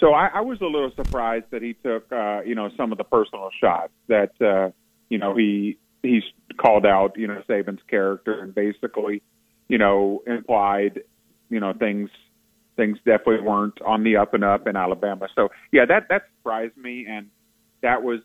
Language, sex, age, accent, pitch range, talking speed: English, male, 40-59, American, 100-125 Hz, 185 wpm